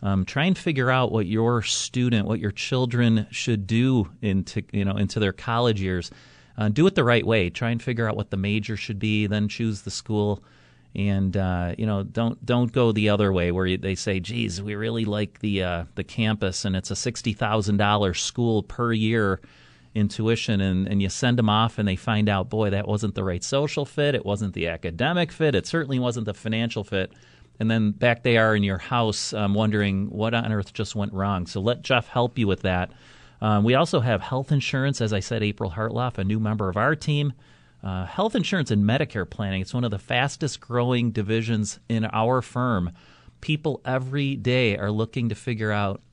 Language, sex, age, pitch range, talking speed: English, male, 30-49, 100-120 Hz, 210 wpm